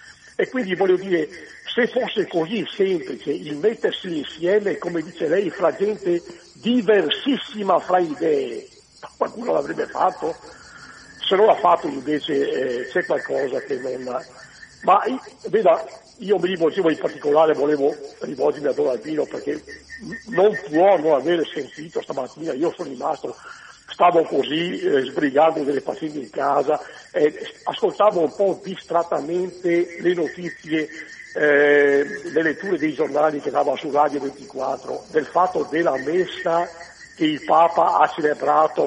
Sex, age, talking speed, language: male, 60-79, 135 wpm, Italian